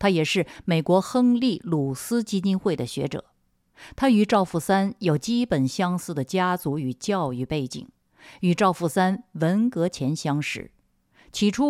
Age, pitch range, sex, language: 50-69, 155-230 Hz, female, Chinese